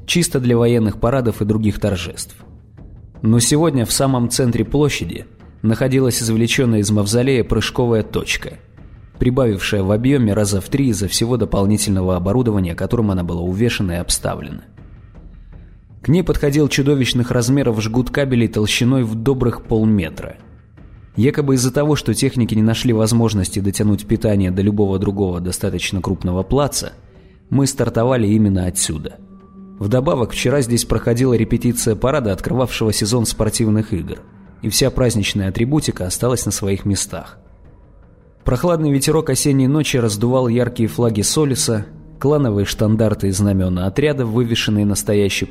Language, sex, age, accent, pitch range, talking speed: Russian, male, 20-39, native, 100-125 Hz, 130 wpm